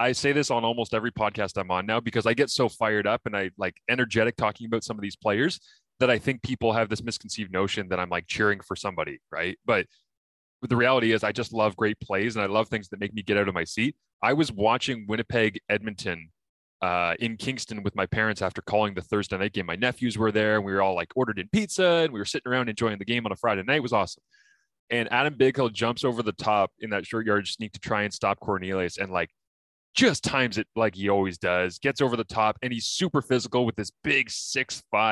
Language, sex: English, male